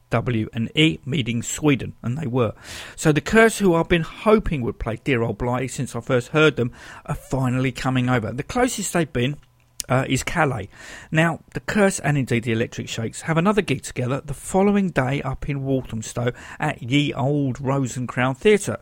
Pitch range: 125-170 Hz